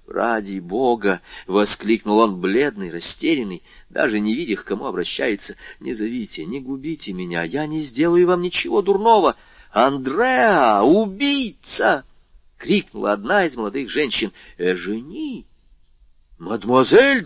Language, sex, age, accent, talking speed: Russian, male, 40-59, native, 120 wpm